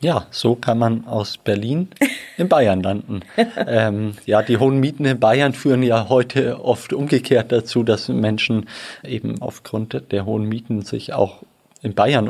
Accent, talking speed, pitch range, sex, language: German, 160 wpm, 110-125 Hz, male, German